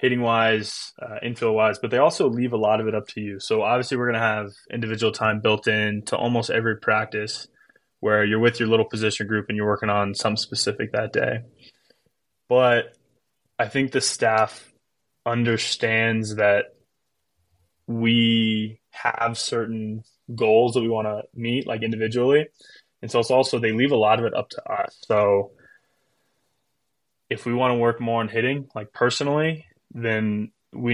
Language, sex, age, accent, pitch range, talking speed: English, male, 20-39, American, 105-115 Hz, 165 wpm